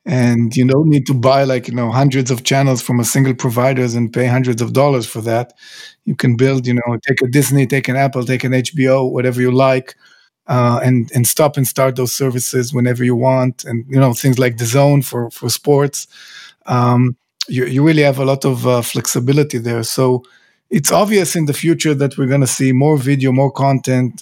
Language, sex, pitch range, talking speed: English, male, 125-145 Hz, 215 wpm